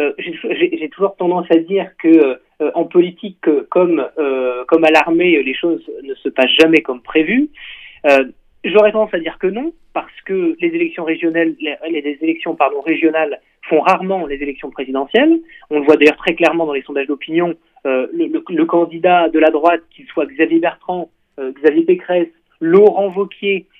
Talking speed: 165 wpm